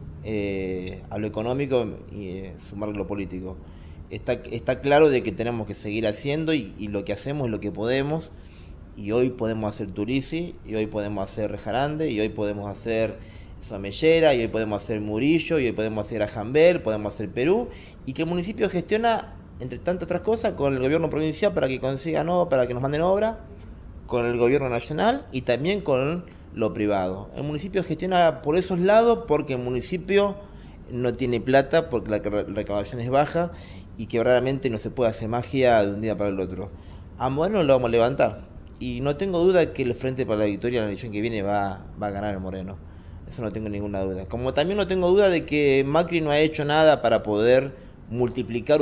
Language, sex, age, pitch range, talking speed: Spanish, male, 20-39, 100-145 Hz, 205 wpm